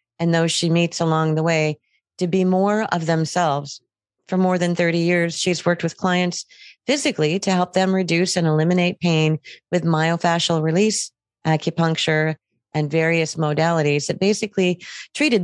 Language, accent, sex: English, American, female